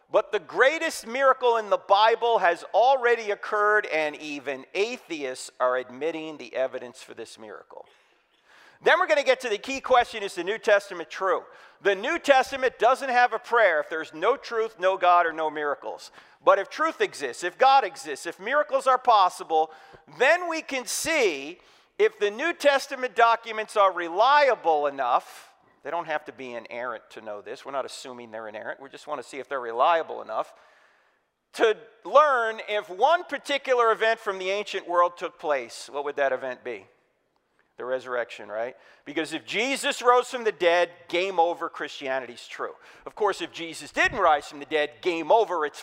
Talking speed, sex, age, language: 180 wpm, male, 50-69, English